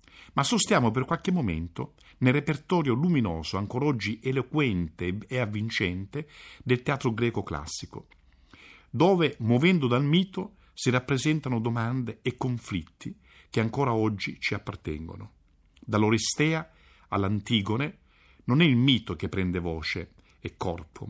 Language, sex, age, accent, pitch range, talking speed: Italian, male, 50-69, native, 90-145 Hz, 120 wpm